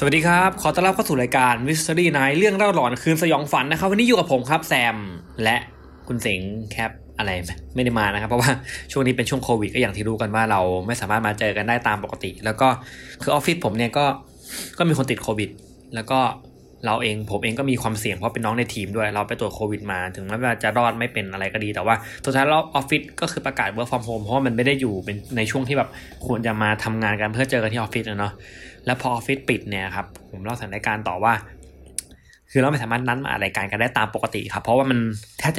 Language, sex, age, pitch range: Thai, male, 20-39, 105-135 Hz